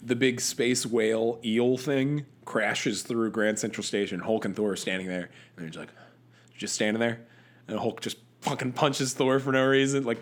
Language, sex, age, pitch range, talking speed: English, male, 20-39, 100-130 Hz, 200 wpm